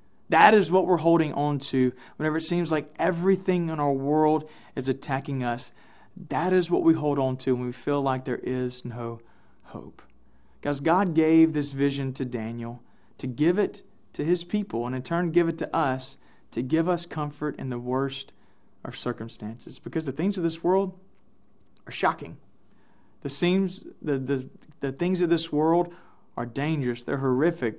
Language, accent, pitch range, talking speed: English, American, 130-165 Hz, 175 wpm